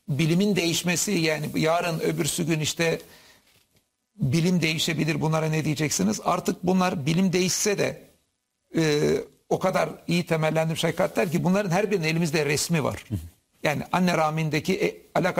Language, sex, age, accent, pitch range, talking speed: Turkish, male, 60-79, native, 155-180 Hz, 135 wpm